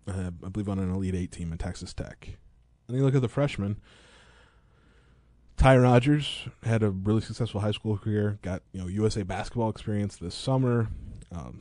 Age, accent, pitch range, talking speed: 20-39, American, 90-110 Hz, 180 wpm